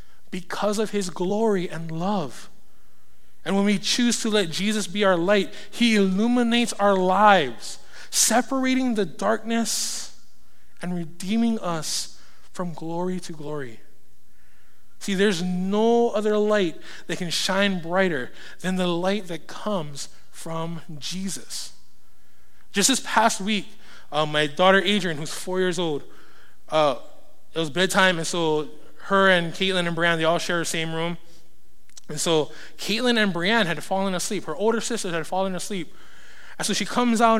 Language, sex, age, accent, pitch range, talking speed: English, male, 20-39, American, 170-225 Hz, 150 wpm